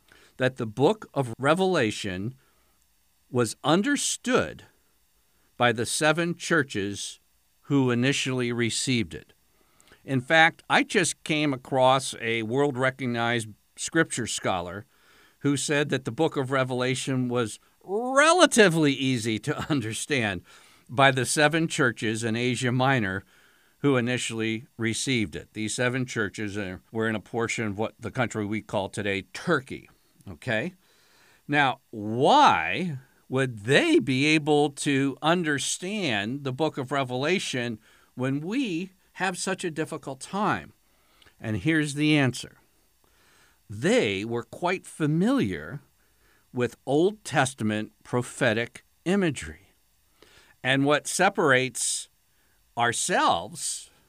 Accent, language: American, English